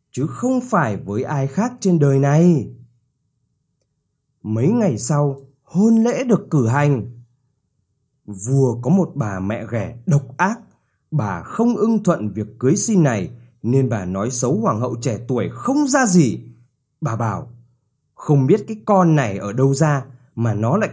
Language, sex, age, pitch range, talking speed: Vietnamese, male, 20-39, 120-180 Hz, 165 wpm